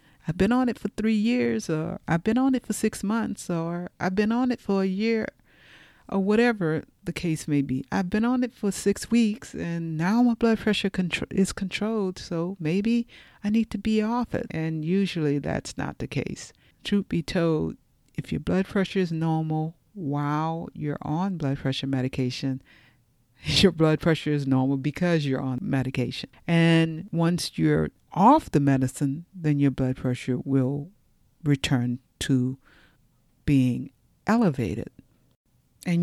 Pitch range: 140-200 Hz